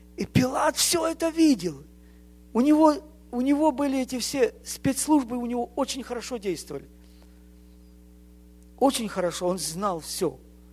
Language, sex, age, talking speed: English, male, 50-69, 135 wpm